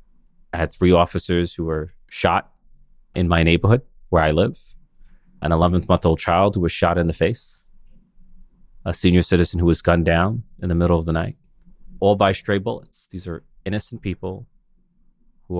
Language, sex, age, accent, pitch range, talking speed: English, male, 30-49, American, 85-105 Hz, 170 wpm